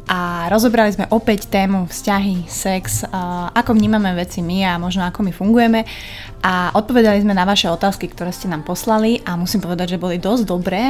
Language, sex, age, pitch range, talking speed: Slovak, female, 20-39, 180-215 Hz, 185 wpm